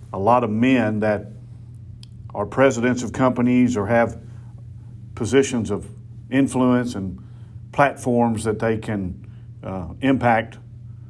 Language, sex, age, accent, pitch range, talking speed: English, male, 50-69, American, 115-125 Hz, 115 wpm